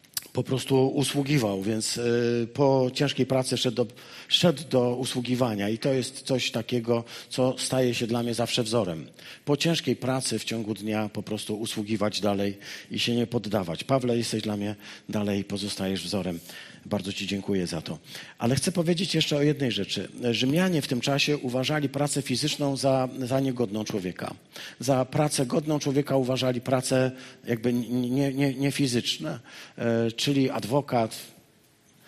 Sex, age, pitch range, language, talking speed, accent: male, 40-59, 105-140 Hz, Polish, 145 wpm, native